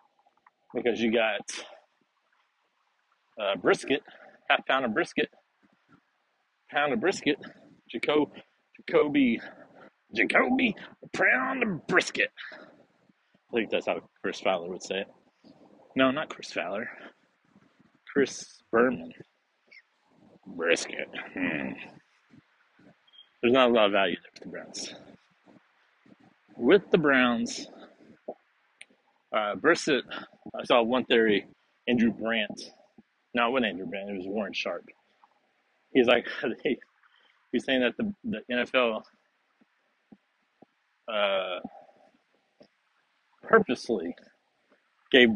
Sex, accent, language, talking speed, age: male, American, English, 100 wpm, 40-59